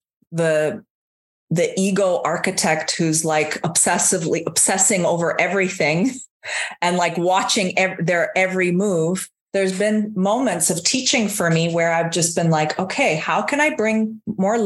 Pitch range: 160-200 Hz